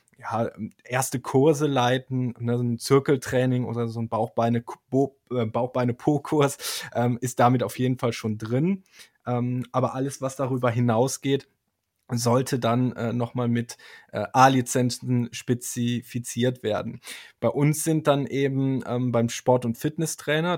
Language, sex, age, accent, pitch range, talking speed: German, male, 20-39, German, 115-130 Hz, 135 wpm